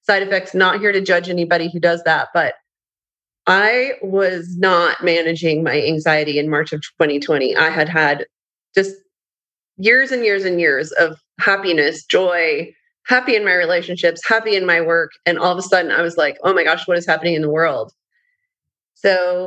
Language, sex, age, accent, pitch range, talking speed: English, female, 30-49, American, 170-210 Hz, 180 wpm